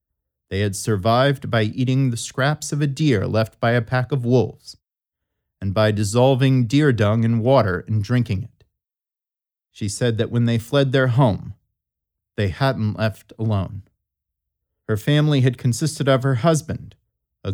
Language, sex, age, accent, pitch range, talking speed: English, male, 40-59, American, 100-130 Hz, 155 wpm